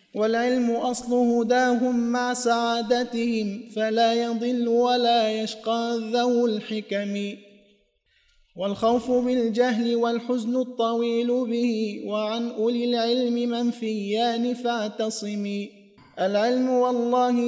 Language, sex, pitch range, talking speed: Arabic, male, 220-245 Hz, 80 wpm